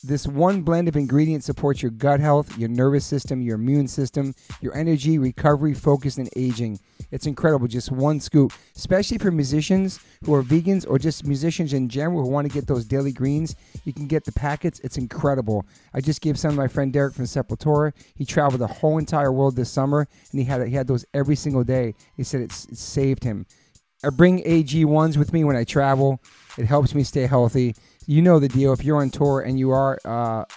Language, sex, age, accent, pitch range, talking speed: English, male, 40-59, American, 125-150 Hz, 215 wpm